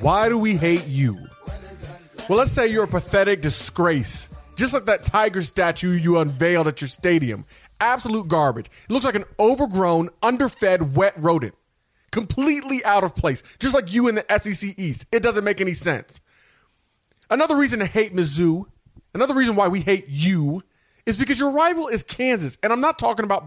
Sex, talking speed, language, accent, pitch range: male, 180 wpm, English, American, 150-230 Hz